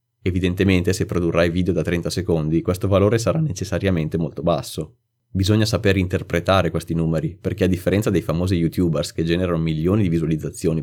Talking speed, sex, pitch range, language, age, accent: 160 wpm, male, 85-100 Hz, Italian, 20-39, native